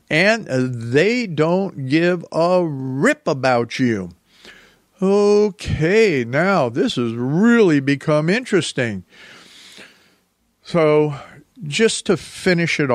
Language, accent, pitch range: English, American, 120-150 Hz